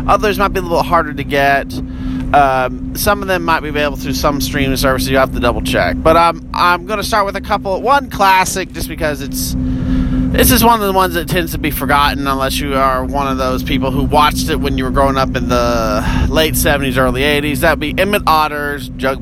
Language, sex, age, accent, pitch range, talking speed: English, male, 30-49, American, 125-165 Hz, 235 wpm